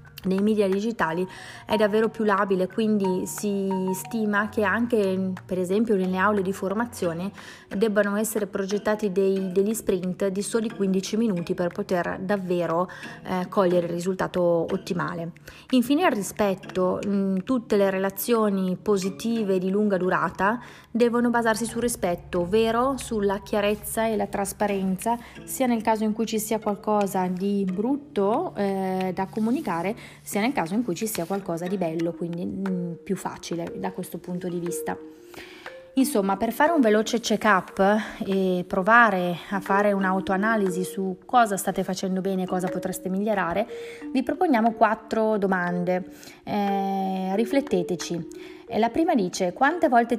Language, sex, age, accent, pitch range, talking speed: Italian, female, 30-49, native, 185-225 Hz, 145 wpm